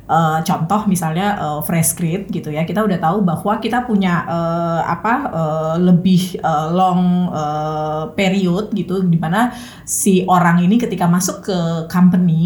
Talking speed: 150 wpm